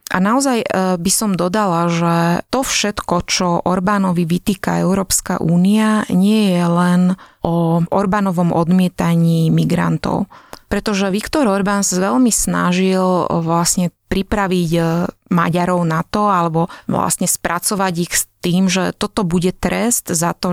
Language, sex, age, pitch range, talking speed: Slovak, female, 20-39, 175-200 Hz, 125 wpm